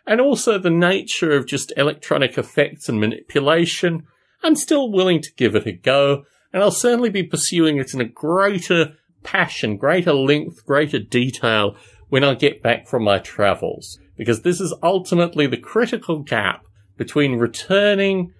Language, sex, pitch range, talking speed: English, male, 120-185 Hz, 155 wpm